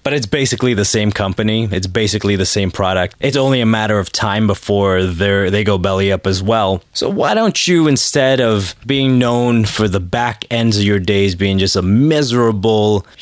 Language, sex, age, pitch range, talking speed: English, male, 20-39, 100-125 Hz, 200 wpm